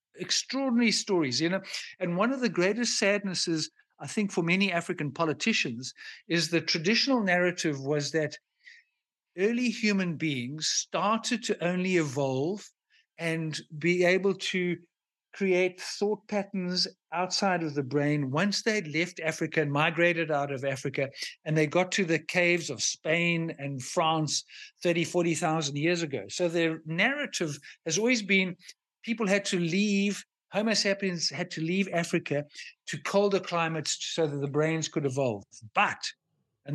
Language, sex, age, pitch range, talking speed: Dutch, male, 50-69, 155-200 Hz, 145 wpm